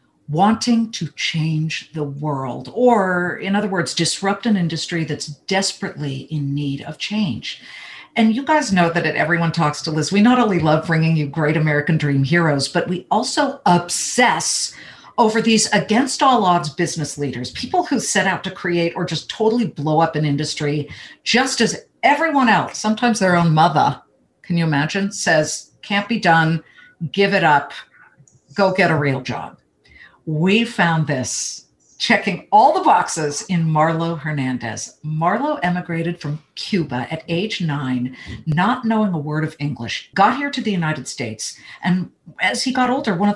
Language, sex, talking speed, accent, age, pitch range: English, female, 165 wpm, American, 50-69, 150-205 Hz